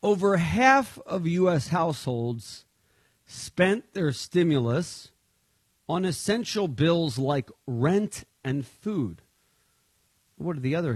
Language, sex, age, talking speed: English, male, 50-69, 105 wpm